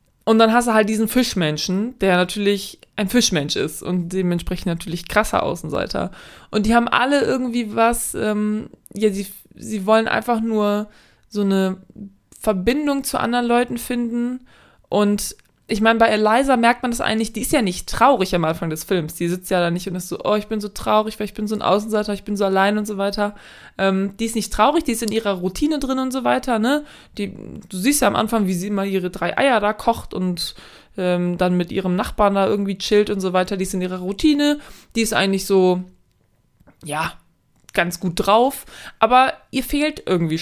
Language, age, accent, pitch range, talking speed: German, 20-39, German, 185-225 Hz, 205 wpm